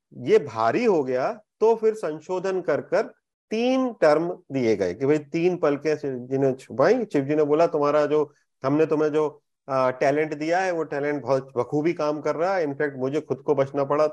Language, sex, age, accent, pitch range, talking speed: Hindi, male, 30-49, native, 135-180 Hz, 170 wpm